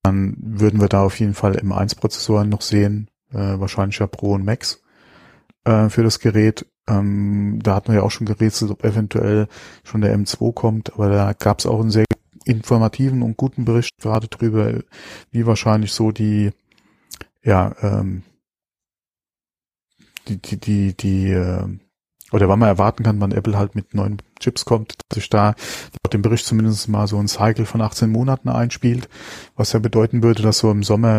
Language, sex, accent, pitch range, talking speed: German, male, German, 100-115 Hz, 180 wpm